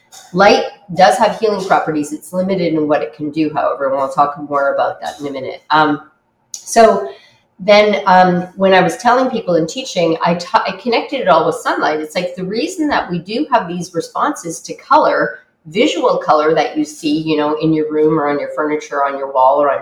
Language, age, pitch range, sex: English, 30-49, 150-195 Hz, female